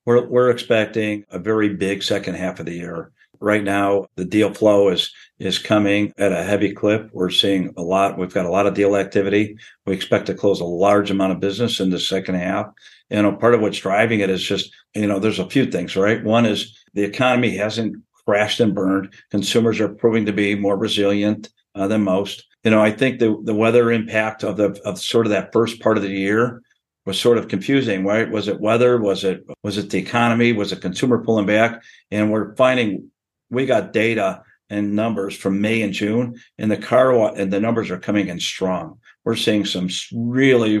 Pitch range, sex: 100-115 Hz, male